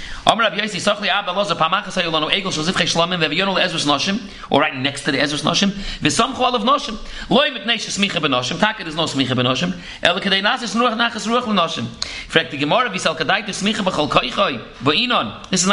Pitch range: 170-225 Hz